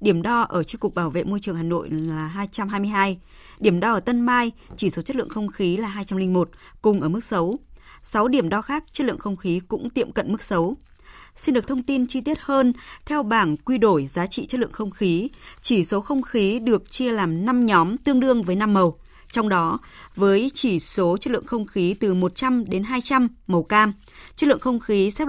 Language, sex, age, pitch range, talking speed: Vietnamese, female, 20-39, 185-240 Hz, 225 wpm